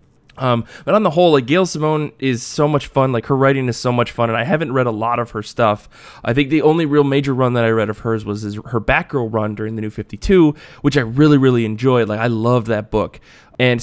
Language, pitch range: English, 110-135 Hz